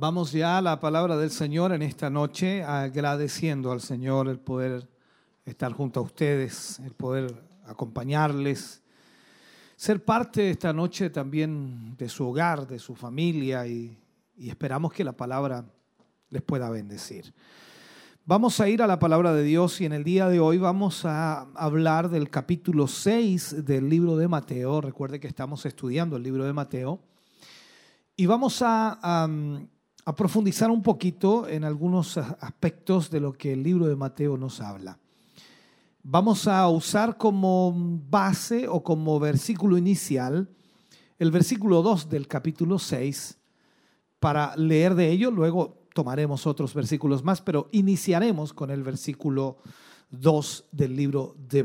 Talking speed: 150 wpm